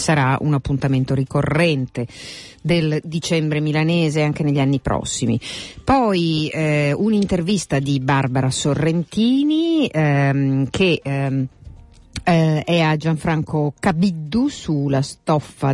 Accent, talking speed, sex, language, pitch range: native, 105 wpm, female, Italian, 130-155 Hz